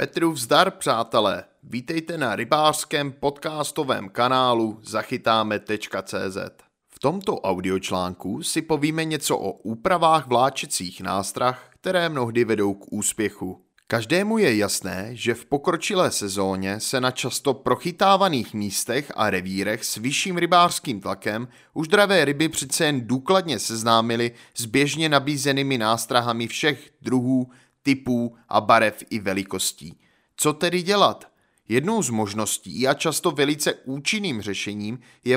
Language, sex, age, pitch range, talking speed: Czech, male, 30-49, 110-150 Hz, 120 wpm